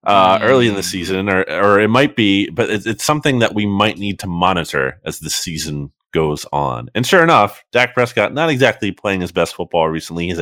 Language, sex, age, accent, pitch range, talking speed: English, male, 30-49, American, 85-110 Hz, 220 wpm